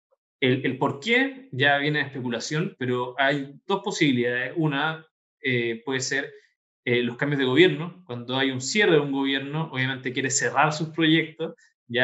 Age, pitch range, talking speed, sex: 20-39, 130-160 Hz, 170 wpm, male